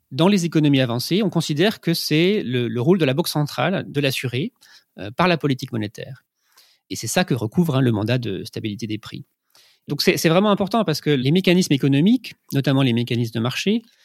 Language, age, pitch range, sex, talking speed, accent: French, 30-49, 125-170 Hz, male, 200 wpm, French